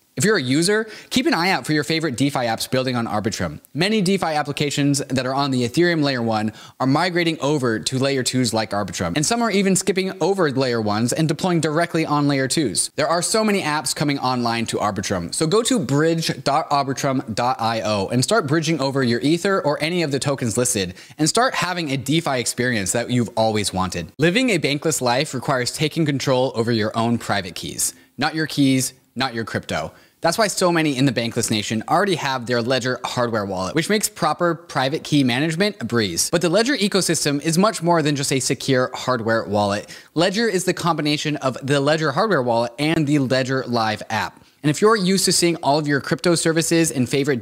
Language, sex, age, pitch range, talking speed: English, male, 20-39, 120-165 Hz, 205 wpm